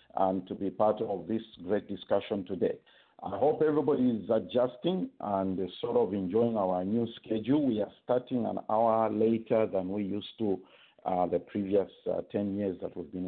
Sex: male